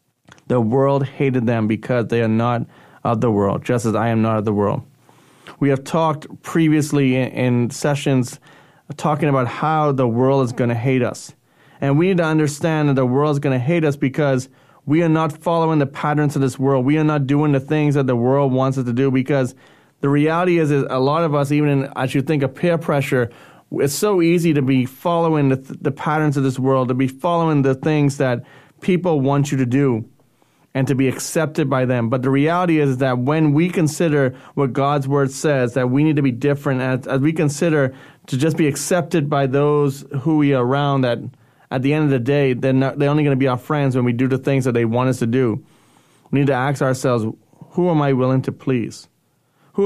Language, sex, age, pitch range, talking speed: English, male, 30-49, 130-150 Hz, 225 wpm